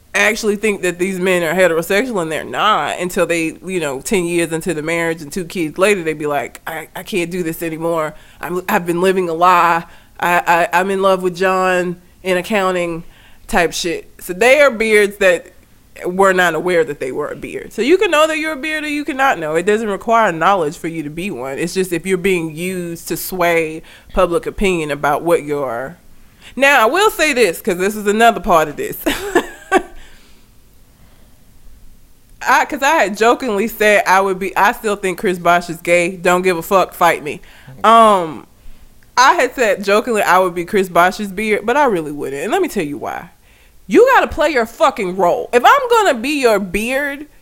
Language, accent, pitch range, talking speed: English, American, 170-230 Hz, 210 wpm